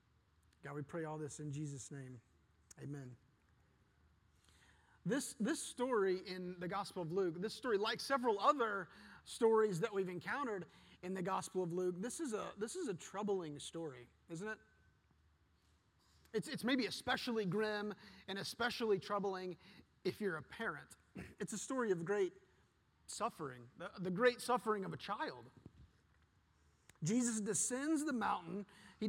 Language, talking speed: English, 140 wpm